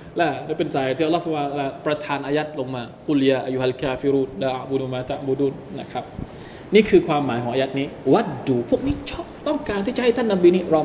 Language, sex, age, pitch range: Thai, male, 20-39, 135-175 Hz